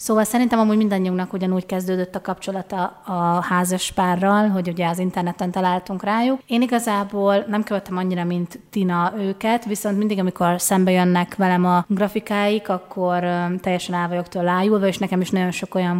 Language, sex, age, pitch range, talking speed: Hungarian, female, 30-49, 180-205 Hz, 160 wpm